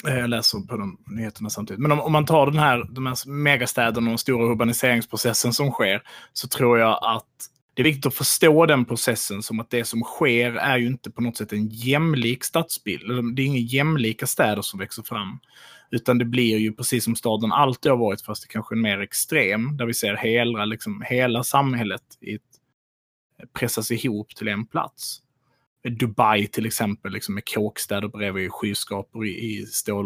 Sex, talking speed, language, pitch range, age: male, 180 wpm, Swedish, 110-130 Hz, 30-49